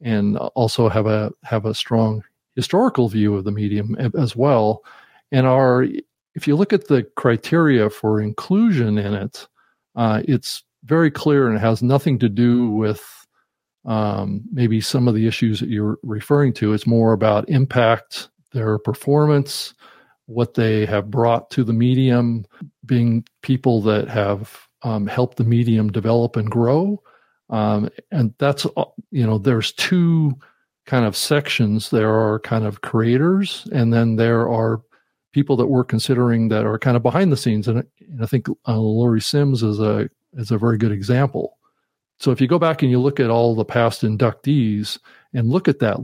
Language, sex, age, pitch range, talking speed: English, male, 50-69, 110-135 Hz, 170 wpm